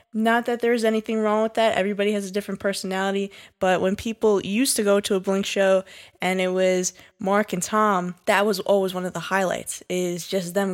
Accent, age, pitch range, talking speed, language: American, 10-29, 175-200 Hz, 210 wpm, English